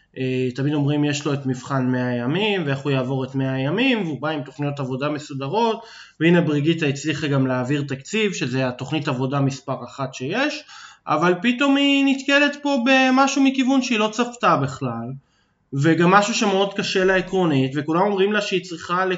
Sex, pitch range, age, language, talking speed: male, 140-185 Hz, 20-39, Hebrew, 170 wpm